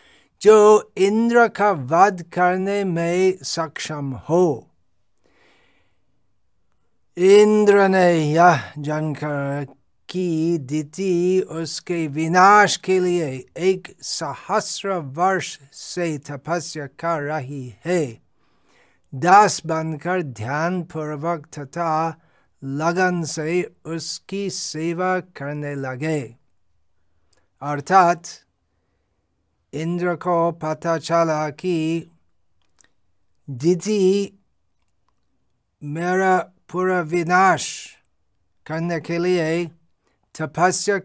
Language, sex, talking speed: Hindi, male, 75 wpm